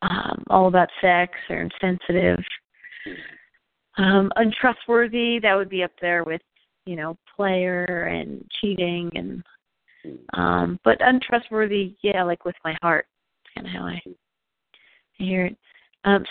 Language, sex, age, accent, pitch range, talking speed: English, female, 40-59, American, 175-200 Hz, 130 wpm